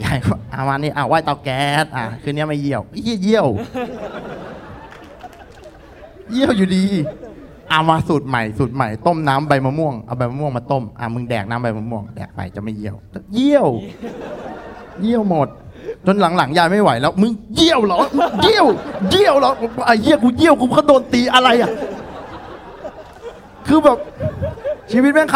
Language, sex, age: Thai, male, 20-39